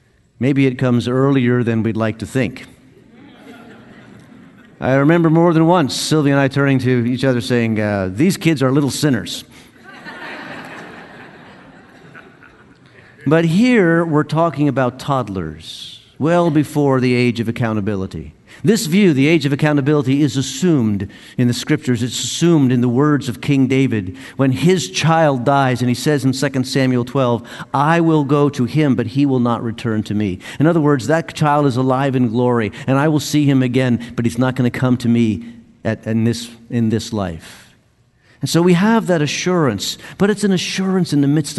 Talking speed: 180 wpm